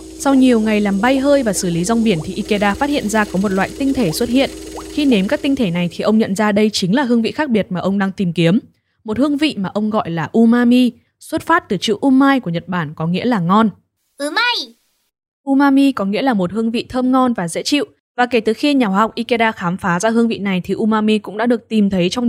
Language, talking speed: Vietnamese, 265 wpm